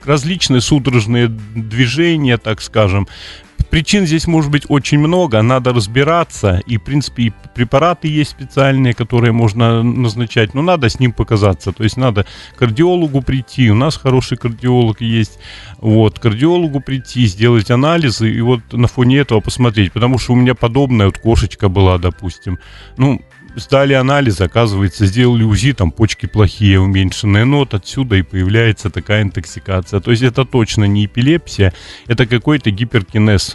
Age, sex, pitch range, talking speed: 30-49, male, 105-130 Hz, 155 wpm